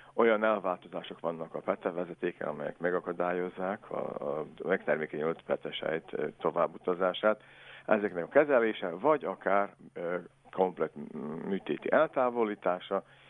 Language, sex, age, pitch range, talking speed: Hungarian, male, 60-79, 85-105 Hz, 90 wpm